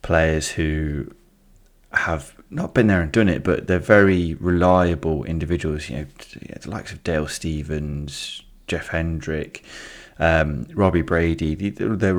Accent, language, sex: British, English, male